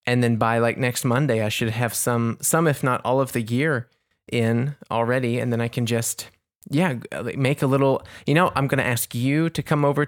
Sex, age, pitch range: male, 20-39, 115-130 Hz